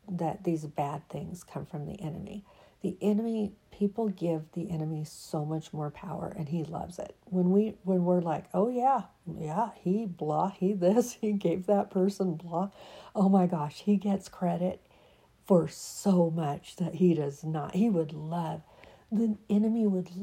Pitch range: 155-195 Hz